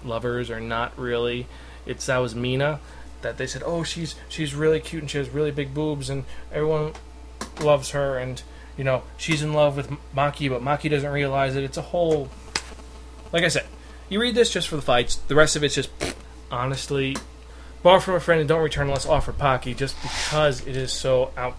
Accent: American